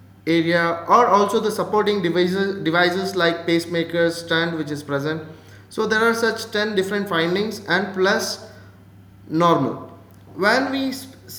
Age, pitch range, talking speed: 20-39, 165-205 Hz, 135 wpm